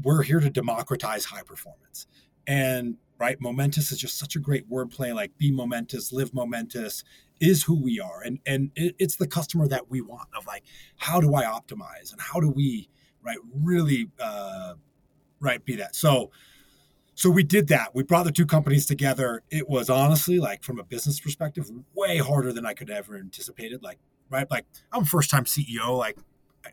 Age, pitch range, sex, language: 30-49, 130-180 Hz, male, English